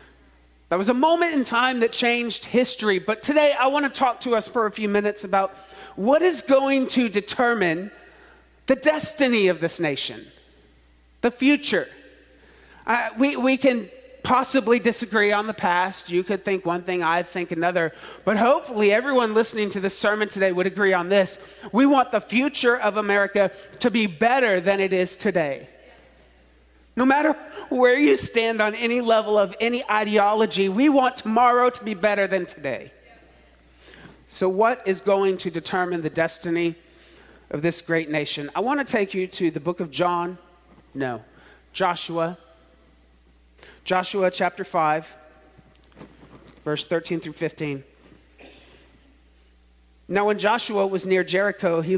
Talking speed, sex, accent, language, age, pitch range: 155 wpm, male, American, English, 30-49, 170-235 Hz